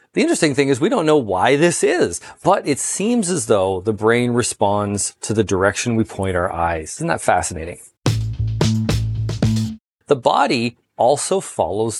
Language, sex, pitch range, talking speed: English, male, 110-145 Hz, 160 wpm